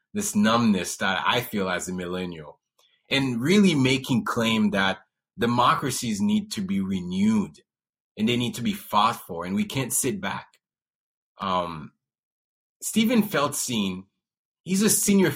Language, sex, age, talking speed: English, male, 30-49, 140 wpm